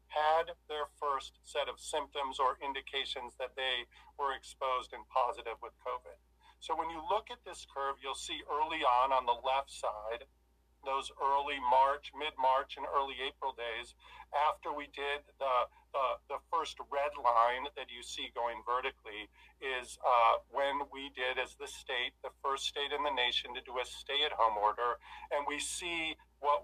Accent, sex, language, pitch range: American, male, English, 130-155 Hz